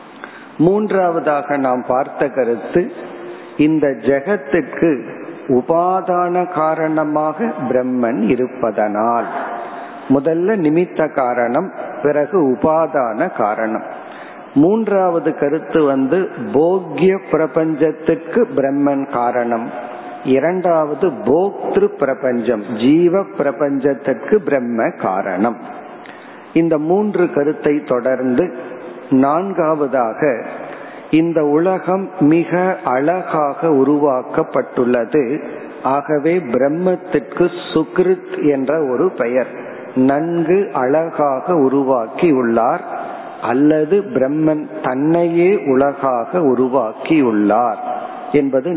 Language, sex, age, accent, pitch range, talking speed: Tamil, male, 50-69, native, 135-170 Hz, 65 wpm